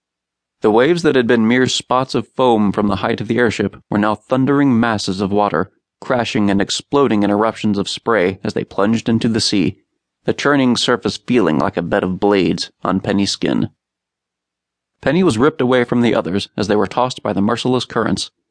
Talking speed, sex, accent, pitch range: 200 wpm, male, American, 100-125 Hz